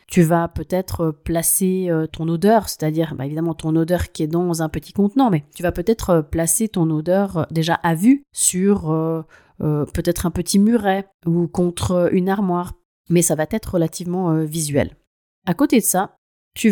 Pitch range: 160-210 Hz